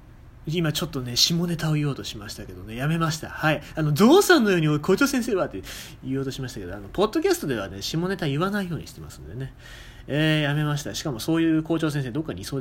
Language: Japanese